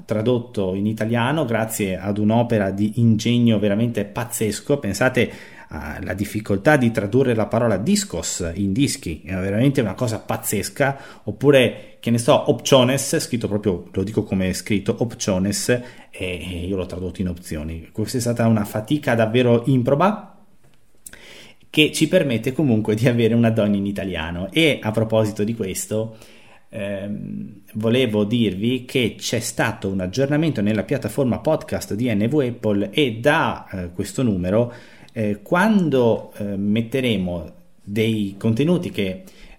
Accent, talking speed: native, 140 wpm